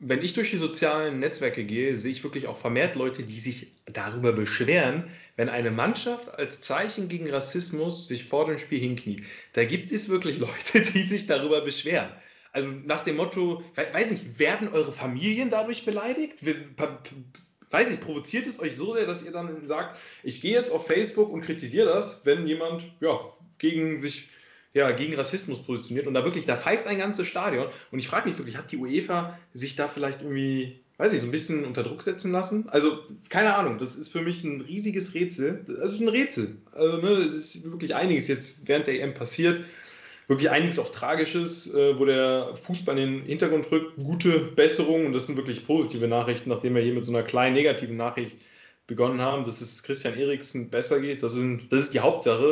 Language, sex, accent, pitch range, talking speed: German, male, German, 130-180 Hz, 200 wpm